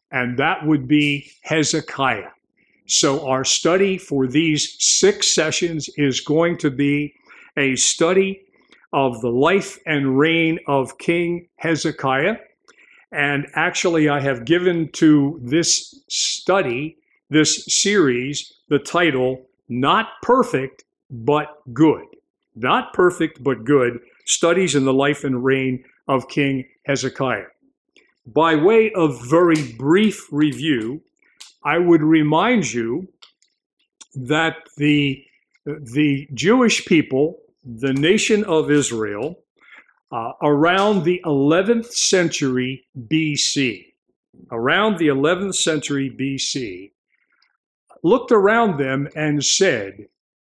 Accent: American